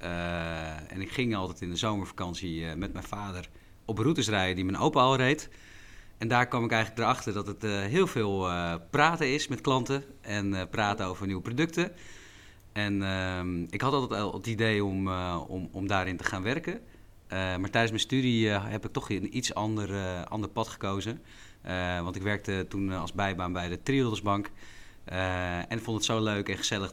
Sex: male